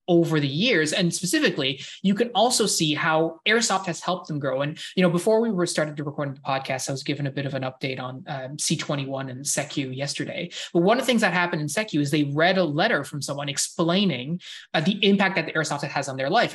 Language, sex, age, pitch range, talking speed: English, male, 20-39, 145-180 Hz, 245 wpm